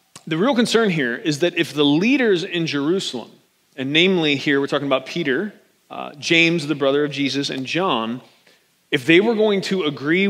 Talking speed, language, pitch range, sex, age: 185 wpm, English, 145-195 Hz, male, 30-49